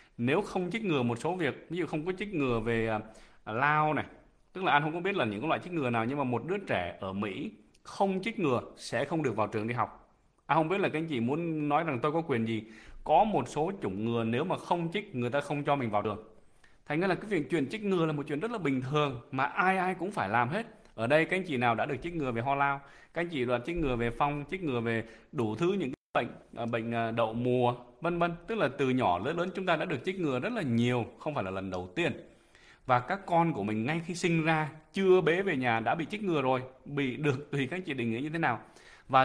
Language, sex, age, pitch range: English, male, 20-39, 120-170 Hz